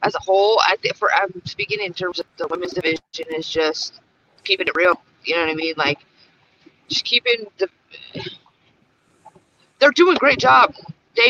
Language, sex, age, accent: English, female, 30-49, American